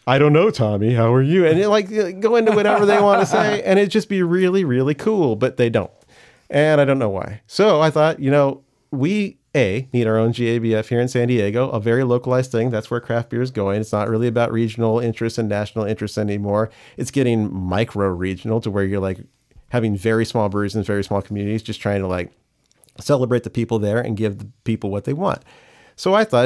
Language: English